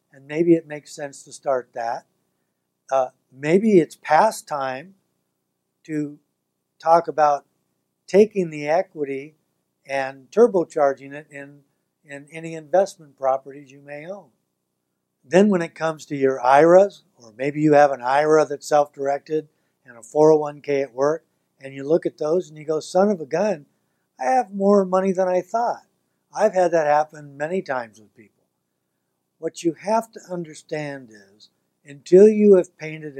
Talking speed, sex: 155 wpm, male